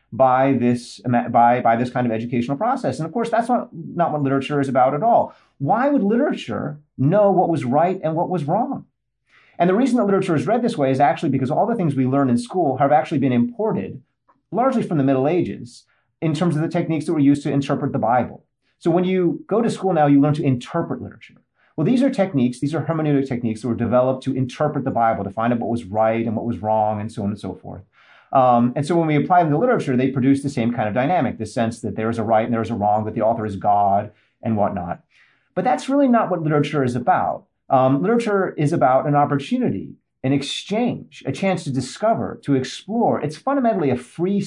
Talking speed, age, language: 240 wpm, 30-49, English